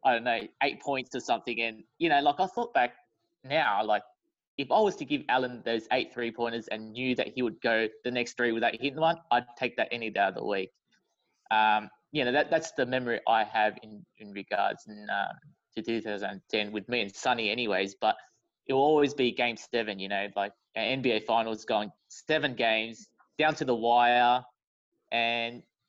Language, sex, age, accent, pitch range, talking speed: English, male, 20-39, Australian, 105-125 Hz, 200 wpm